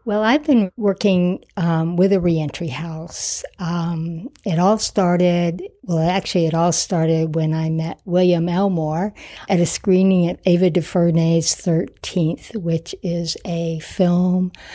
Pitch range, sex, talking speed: 165-190 Hz, female, 140 wpm